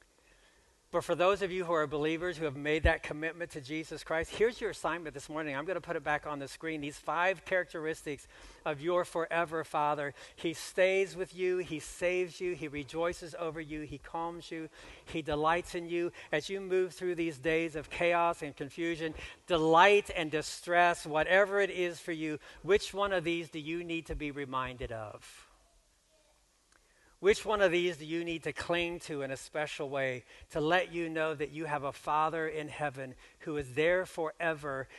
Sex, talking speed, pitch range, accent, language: male, 195 wpm, 140-170 Hz, American, English